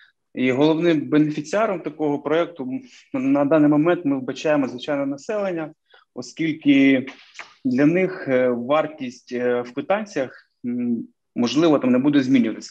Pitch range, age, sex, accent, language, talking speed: 130-185 Hz, 30-49, male, native, Ukrainian, 115 wpm